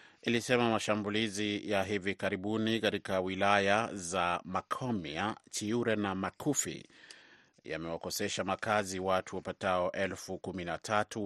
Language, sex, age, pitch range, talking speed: Swahili, male, 30-49, 90-110 Hz, 90 wpm